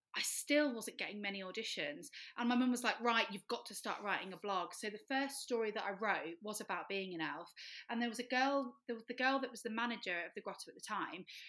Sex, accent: female, British